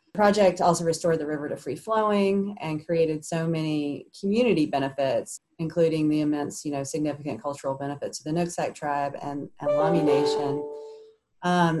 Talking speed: 165 wpm